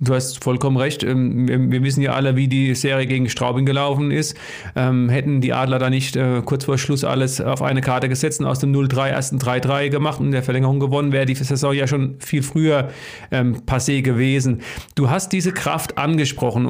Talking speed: 195 wpm